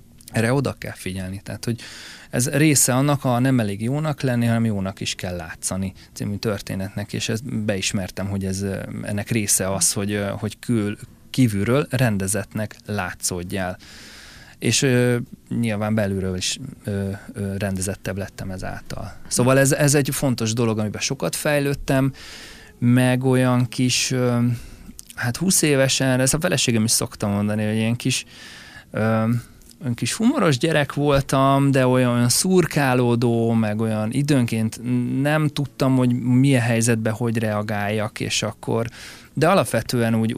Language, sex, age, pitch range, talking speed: Hungarian, male, 20-39, 100-130 Hz, 130 wpm